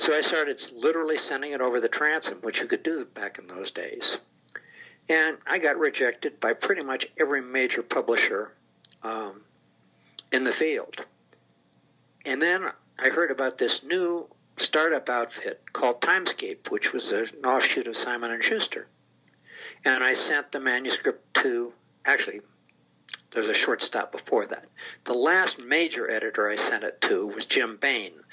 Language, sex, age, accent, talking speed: English, male, 60-79, American, 155 wpm